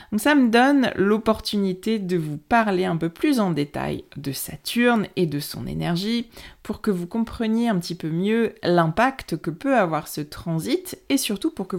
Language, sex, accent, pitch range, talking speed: French, female, French, 165-200 Hz, 190 wpm